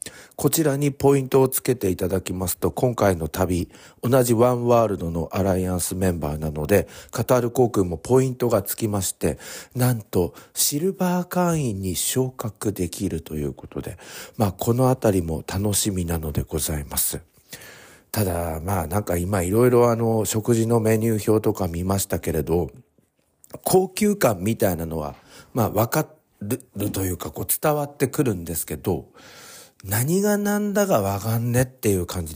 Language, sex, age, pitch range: Japanese, male, 50-69, 85-130 Hz